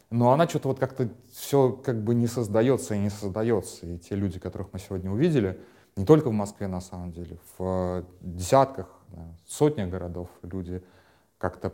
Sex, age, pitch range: male, 30-49, 90-115 Hz